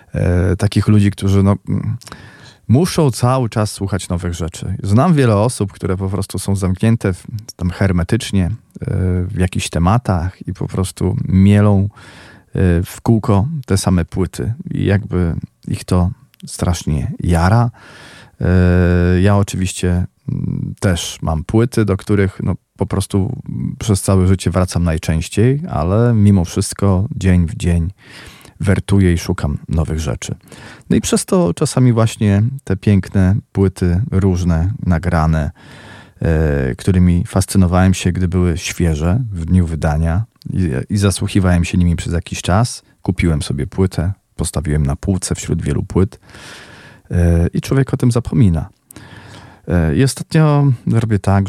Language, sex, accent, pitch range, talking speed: Polish, male, native, 90-110 Hz, 130 wpm